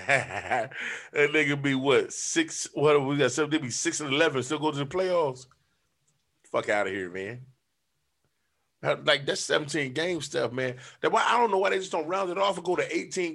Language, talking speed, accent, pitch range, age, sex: English, 210 wpm, American, 115-160 Hz, 30-49, male